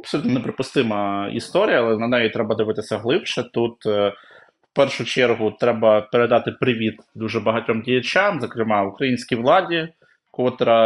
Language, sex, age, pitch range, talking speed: Ukrainian, male, 20-39, 110-130 Hz, 125 wpm